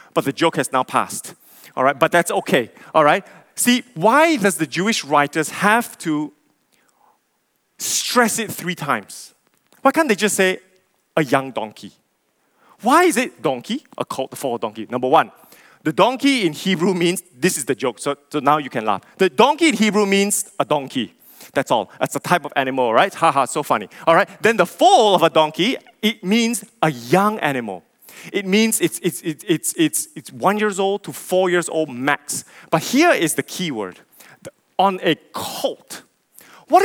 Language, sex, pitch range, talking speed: English, male, 140-210 Hz, 190 wpm